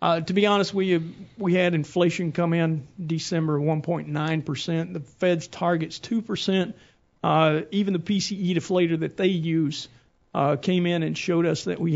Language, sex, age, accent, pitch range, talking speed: English, male, 50-69, American, 155-190 Hz, 165 wpm